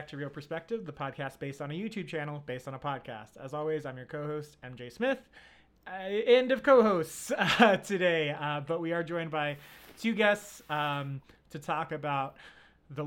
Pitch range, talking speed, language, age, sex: 130-175 Hz, 185 wpm, English, 30-49, male